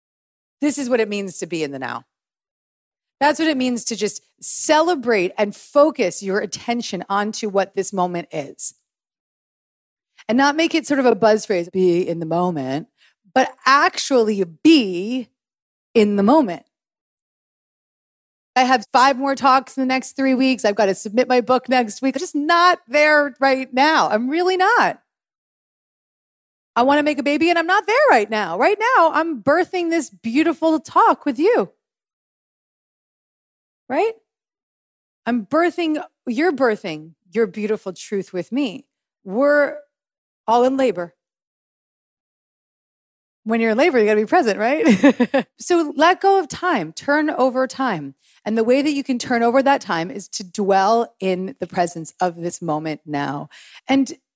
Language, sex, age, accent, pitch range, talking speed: English, female, 30-49, American, 200-295 Hz, 160 wpm